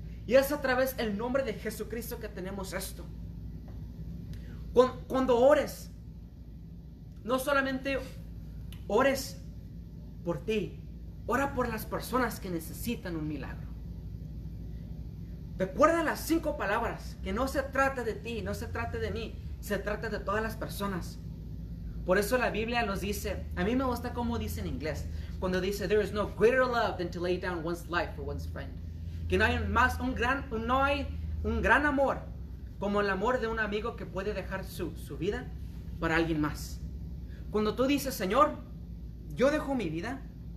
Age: 30-49